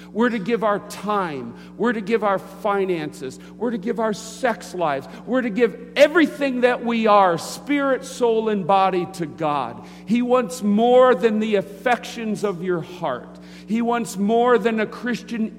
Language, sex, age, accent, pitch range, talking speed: English, male, 50-69, American, 150-215 Hz, 170 wpm